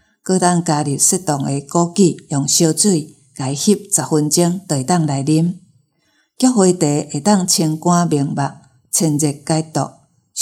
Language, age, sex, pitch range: Chinese, 50-69, female, 145-180 Hz